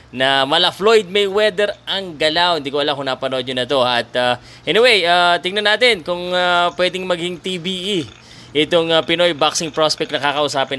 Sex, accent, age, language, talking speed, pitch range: male, native, 20-39, Filipino, 180 wpm, 135-175 Hz